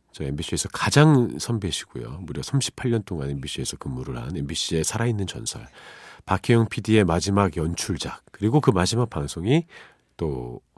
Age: 40-59